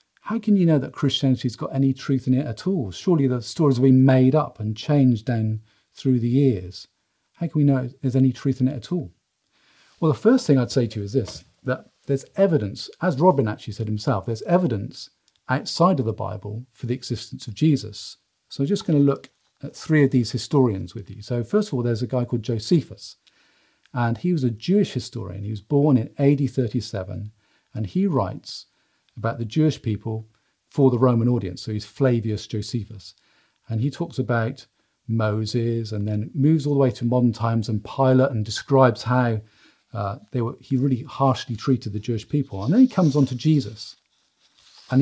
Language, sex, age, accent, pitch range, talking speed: English, male, 40-59, British, 110-140 Hz, 205 wpm